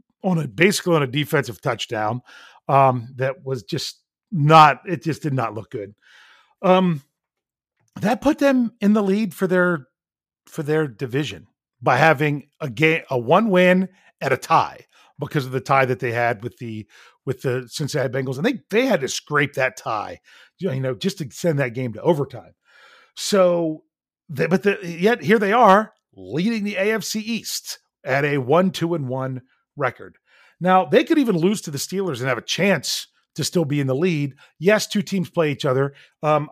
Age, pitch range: 40-59, 130-180 Hz